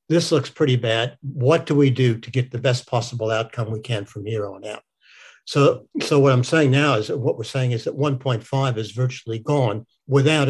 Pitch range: 125-155 Hz